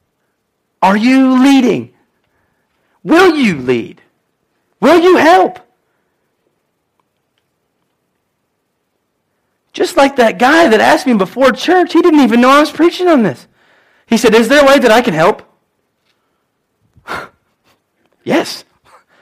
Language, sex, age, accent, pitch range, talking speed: English, male, 40-59, American, 220-280 Hz, 120 wpm